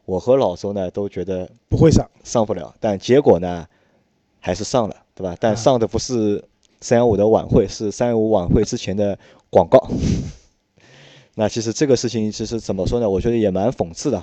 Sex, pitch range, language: male, 95-120 Hz, Chinese